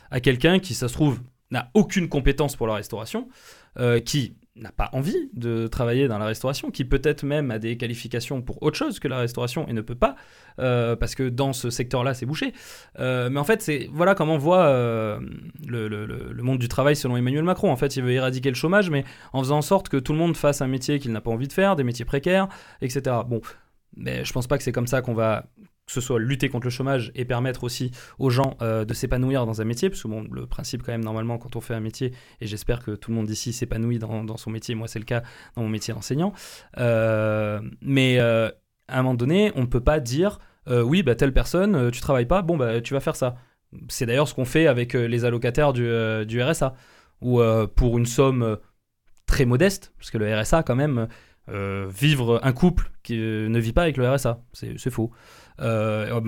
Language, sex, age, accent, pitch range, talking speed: French, male, 20-39, French, 115-145 Hz, 245 wpm